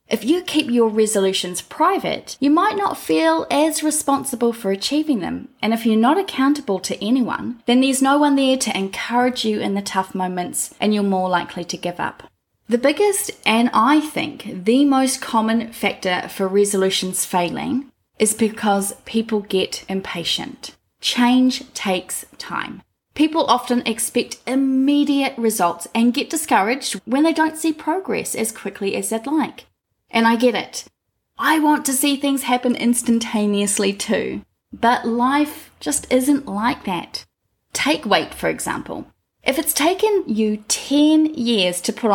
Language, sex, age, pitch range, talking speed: English, female, 20-39, 200-275 Hz, 155 wpm